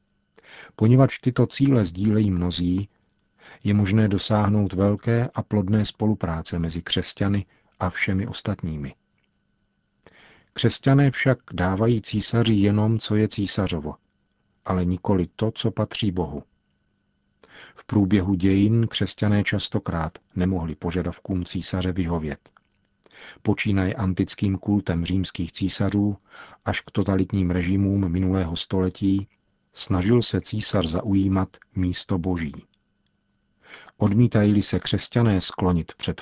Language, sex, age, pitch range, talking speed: Czech, male, 50-69, 90-105 Hz, 105 wpm